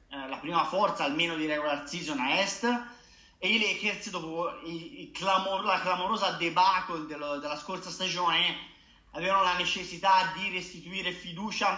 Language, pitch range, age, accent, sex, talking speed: Italian, 170-200 Hz, 30-49, native, male, 140 wpm